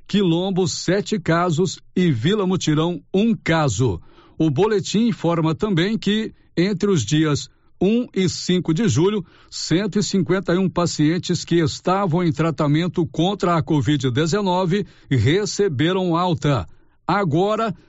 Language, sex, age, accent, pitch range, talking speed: Portuguese, male, 60-79, Brazilian, 155-190 Hz, 115 wpm